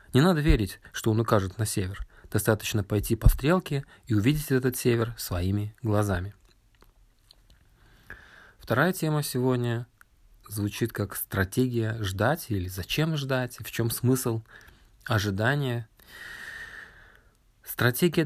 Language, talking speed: Russian, 110 wpm